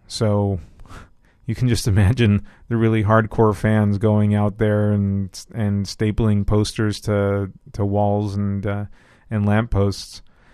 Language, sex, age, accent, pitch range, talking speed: English, male, 30-49, American, 100-115 Hz, 135 wpm